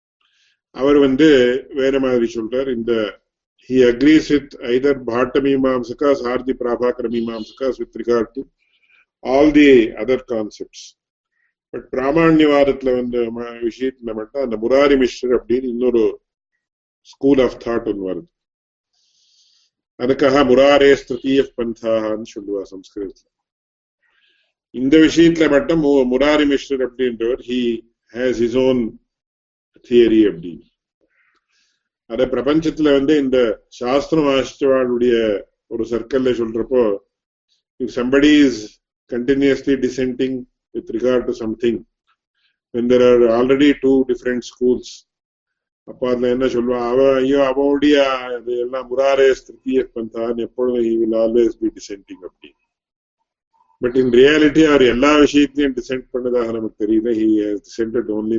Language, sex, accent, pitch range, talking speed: English, male, Indian, 115-140 Hz, 95 wpm